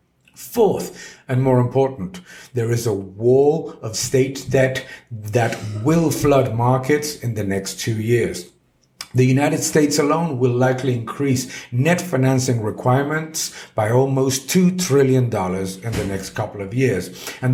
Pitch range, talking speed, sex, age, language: 110-140 Hz, 140 wpm, male, 50-69, English